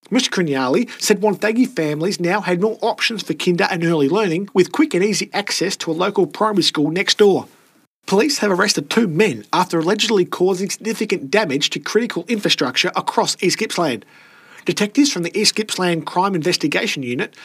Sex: male